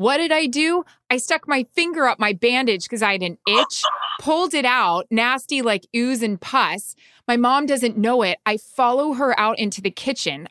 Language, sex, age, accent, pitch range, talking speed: English, female, 20-39, American, 205-275 Hz, 205 wpm